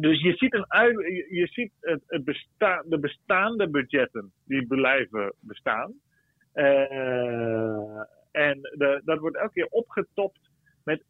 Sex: male